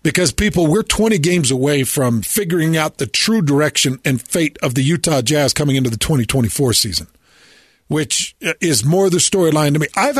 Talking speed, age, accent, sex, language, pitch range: 180 wpm, 50-69, American, male, English, 145-205 Hz